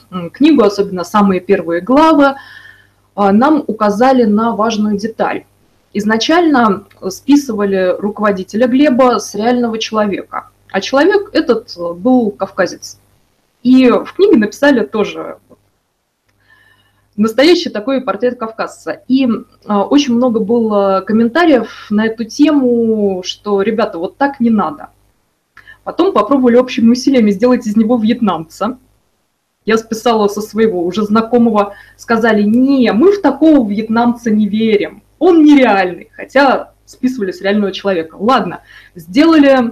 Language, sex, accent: Russian, female, native